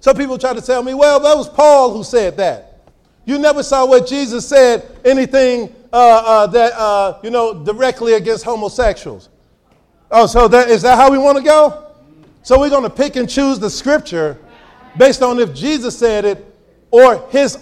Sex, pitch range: male, 225-285 Hz